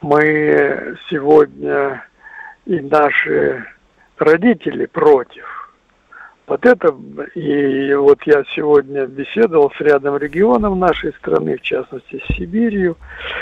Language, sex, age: Russian, male, 60-79